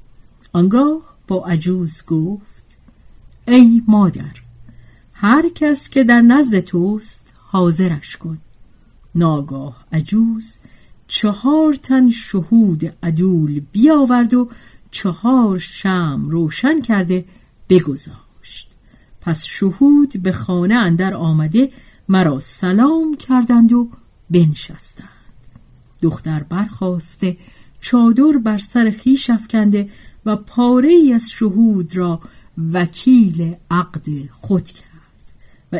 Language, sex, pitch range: Persian, female, 160-235 Hz